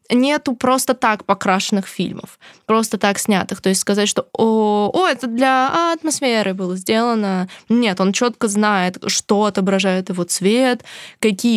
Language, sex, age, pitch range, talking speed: Russian, female, 20-39, 190-225 Hz, 145 wpm